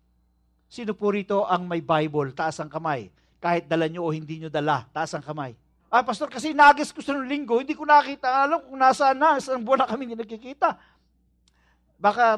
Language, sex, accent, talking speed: English, male, Filipino, 190 wpm